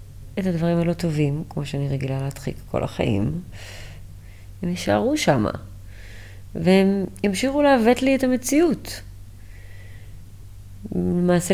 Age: 30-49